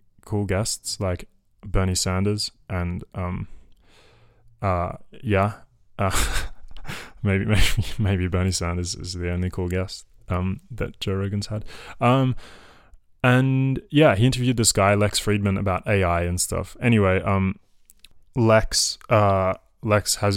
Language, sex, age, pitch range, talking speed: English, male, 20-39, 95-110 Hz, 130 wpm